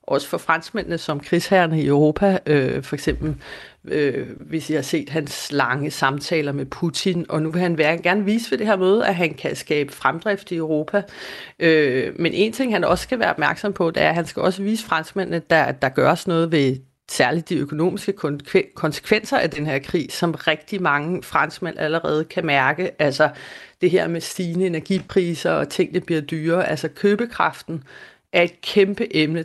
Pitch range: 150-185 Hz